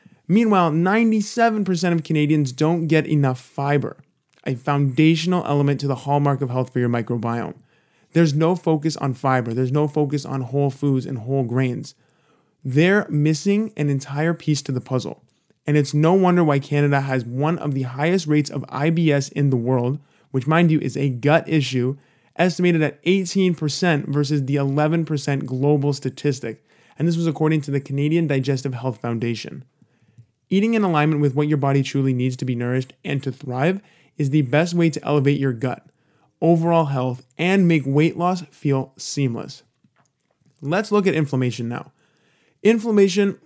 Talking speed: 165 wpm